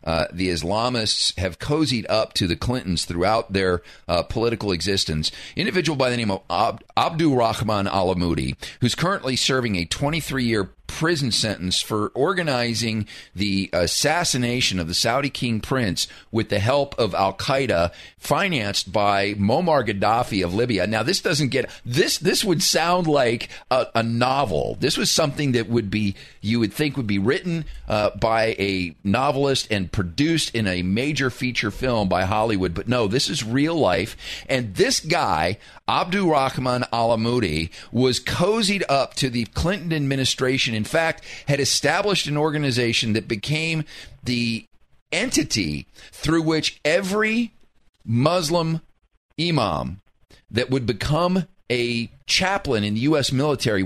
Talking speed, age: 145 wpm, 40-59